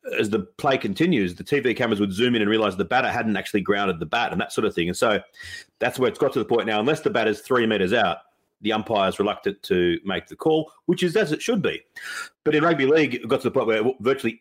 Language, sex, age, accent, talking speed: English, male, 40-59, Australian, 275 wpm